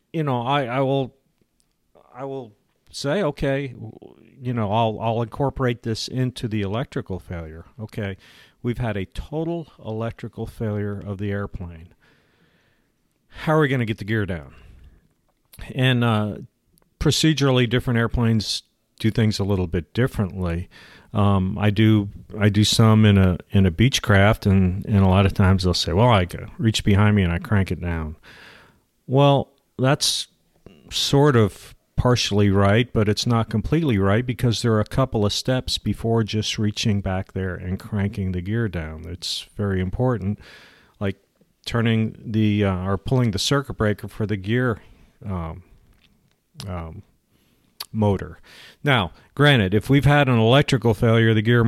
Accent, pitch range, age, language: American, 95-120 Hz, 50-69, English